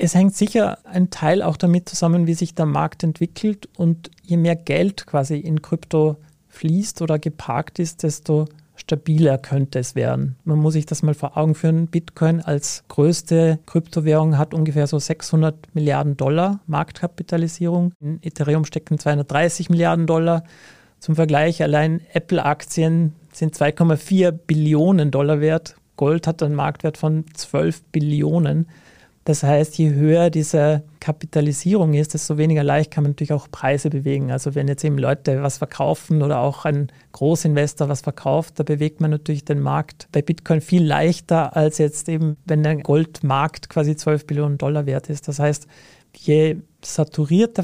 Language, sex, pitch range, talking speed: German, male, 150-165 Hz, 155 wpm